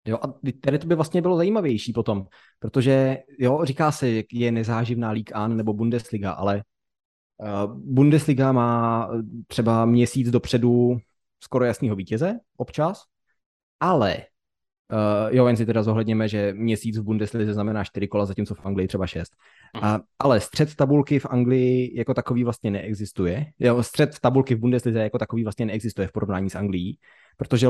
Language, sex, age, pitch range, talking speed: Czech, male, 20-39, 110-130 Hz, 160 wpm